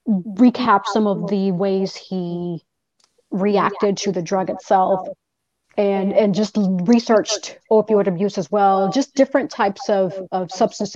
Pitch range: 195-255 Hz